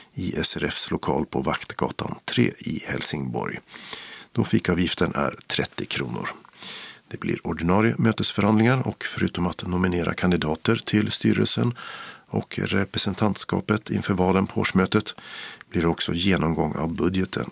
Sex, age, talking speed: male, 50-69, 125 wpm